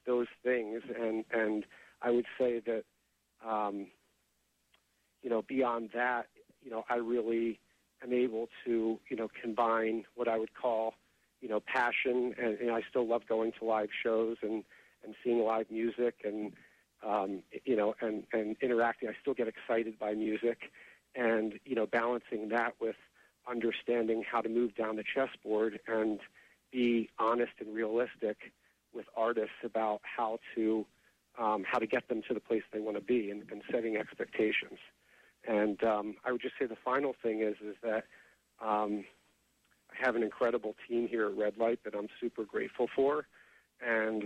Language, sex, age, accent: English, male, 40-59, American